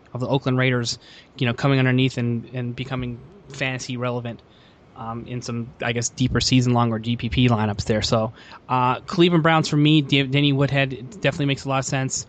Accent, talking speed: American, 195 wpm